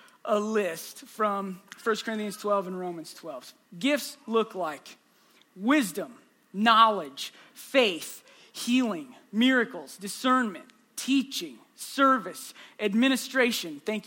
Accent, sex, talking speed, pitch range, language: American, male, 95 wpm, 205-285 Hz, English